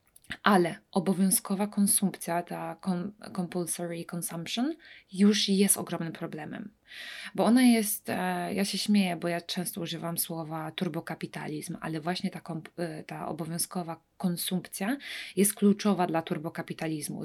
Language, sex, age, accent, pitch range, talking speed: English, female, 20-39, Polish, 170-205 Hz, 120 wpm